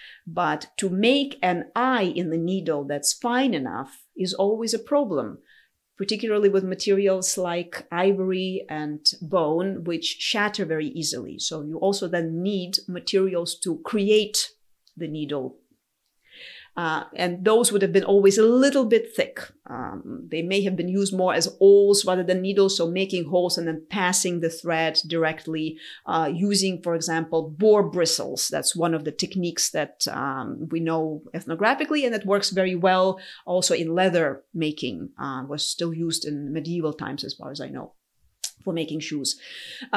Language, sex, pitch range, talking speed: English, female, 165-215 Hz, 160 wpm